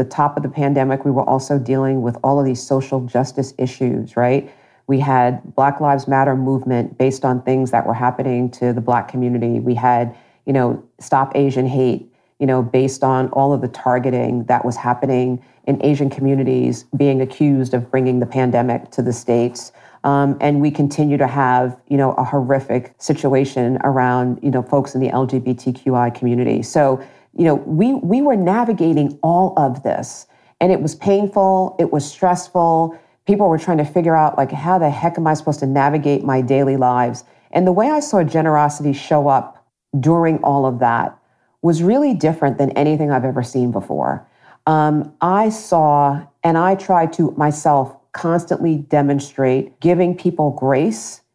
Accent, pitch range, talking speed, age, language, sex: American, 125-155 Hz, 175 wpm, 40-59, English, female